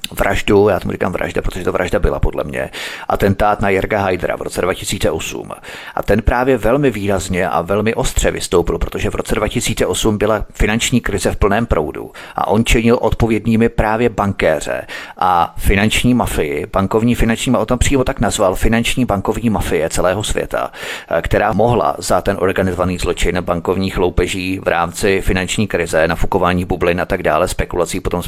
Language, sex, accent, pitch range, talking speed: Czech, male, native, 90-110 Hz, 170 wpm